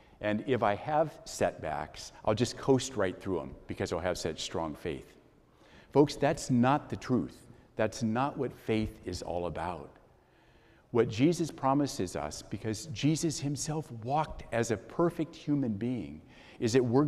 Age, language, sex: 50-69, English, male